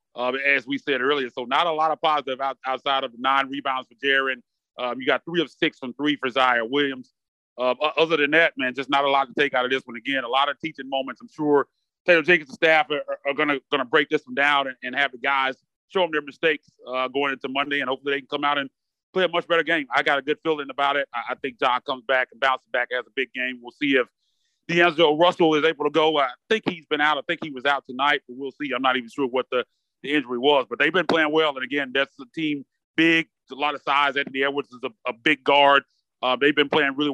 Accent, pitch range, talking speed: American, 130-155 Hz, 275 wpm